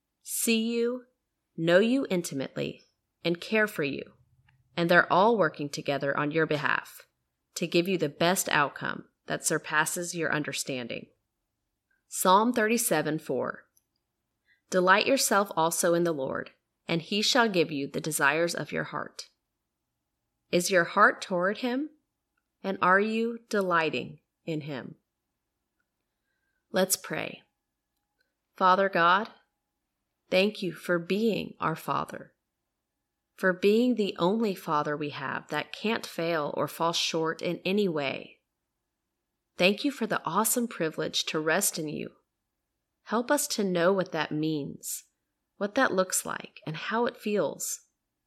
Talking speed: 135 wpm